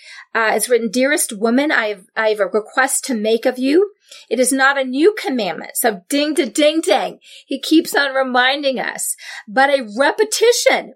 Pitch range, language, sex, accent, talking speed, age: 210-265 Hz, English, female, American, 185 wpm, 40-59